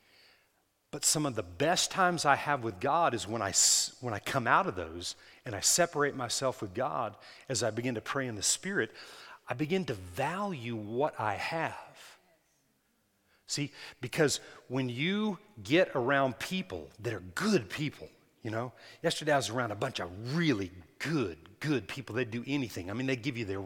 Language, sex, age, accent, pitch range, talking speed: English, male, 40-59, American, 120-165 Hz, 185 wpm